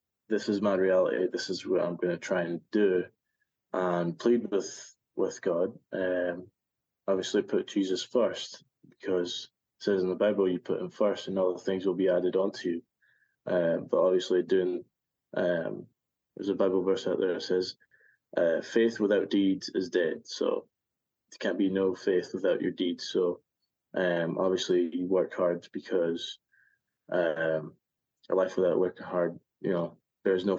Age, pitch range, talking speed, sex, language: 20-39, 90-100 Hz, 170 wpm, male, English